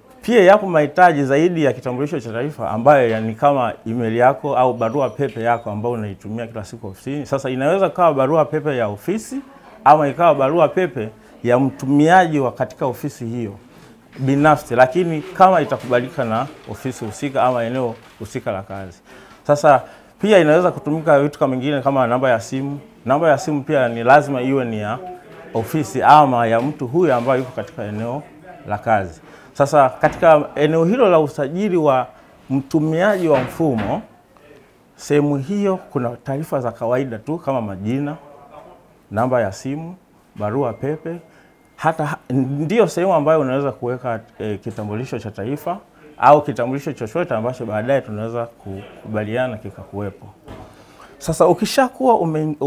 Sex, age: male, 30-49